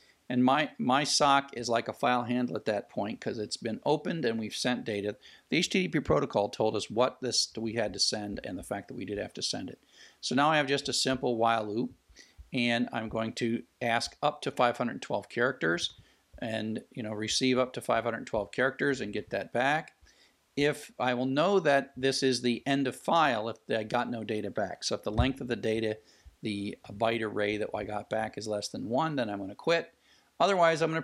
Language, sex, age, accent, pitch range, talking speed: English, male, 50-69, American, 110-135 Hz, 220 wpm